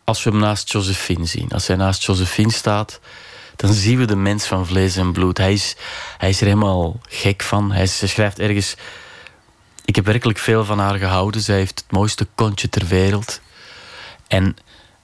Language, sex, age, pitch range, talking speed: Dutch, male, 30-49, 100-125 Hz, 185 wpm